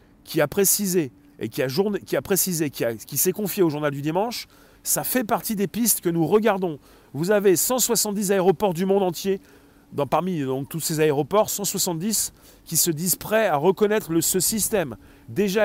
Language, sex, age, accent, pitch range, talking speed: French, male, 40-59, French, 150-200 Hz, 195 wpm